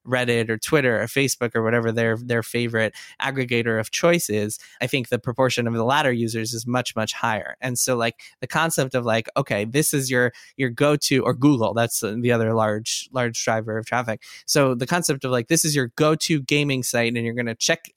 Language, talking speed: English, 220 wpm